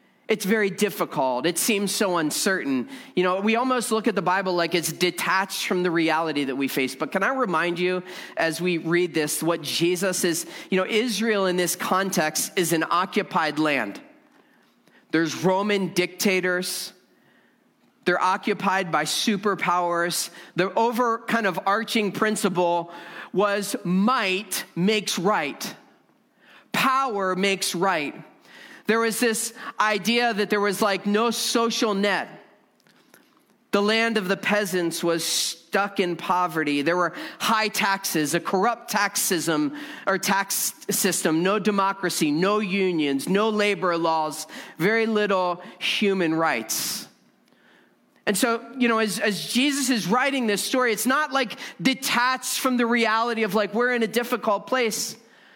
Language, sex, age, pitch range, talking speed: English, male, 40-59, 175-225 Hz, 145 wpm